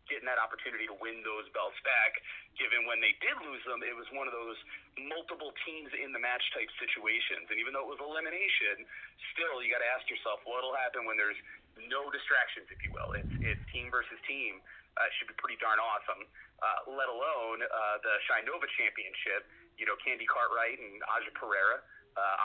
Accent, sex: American, male